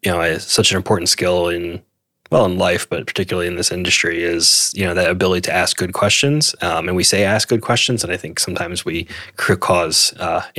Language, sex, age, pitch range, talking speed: English, male, 20-39, 90-105 Hz, 215 wpm